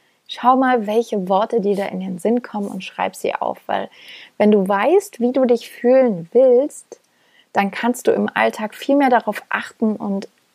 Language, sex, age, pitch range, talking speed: German, female, 30-49, 190-235 Hz, 190 wpm